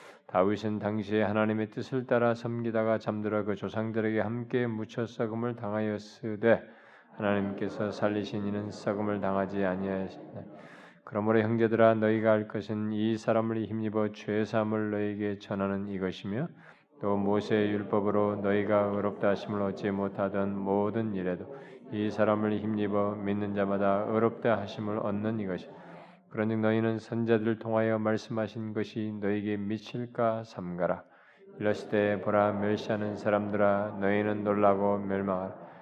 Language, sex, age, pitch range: Korean, male, 20-39, 100-110 Hz